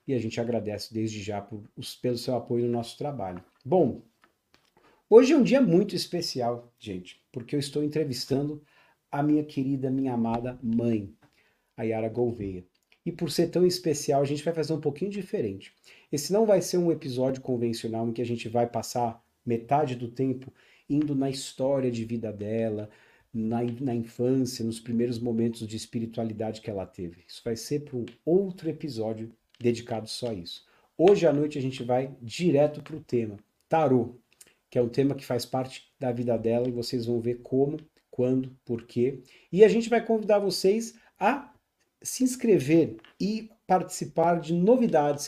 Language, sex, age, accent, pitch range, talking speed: English, male, 40-59, Brazilian, 115-150 Hz, 170 wpm